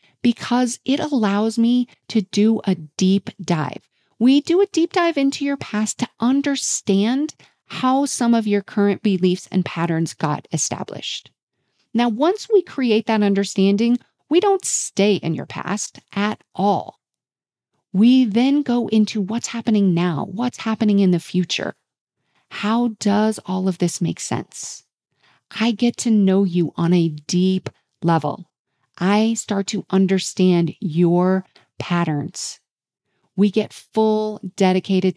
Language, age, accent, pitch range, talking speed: English, 40-59, American, 185-230 Hz, 140 wpm